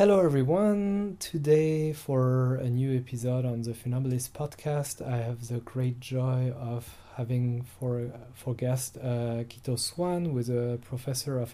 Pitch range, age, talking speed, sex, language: 120-140 Hz, 30-49, 155 wpm, male, English